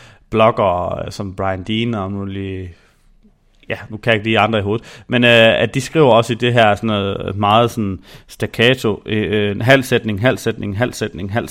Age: 30-49